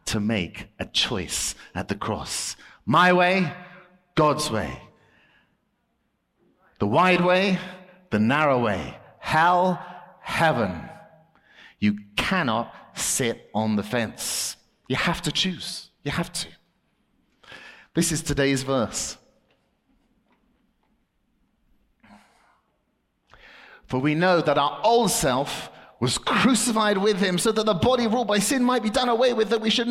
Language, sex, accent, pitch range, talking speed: English, male, British, 135-215 Hz, 125 wpm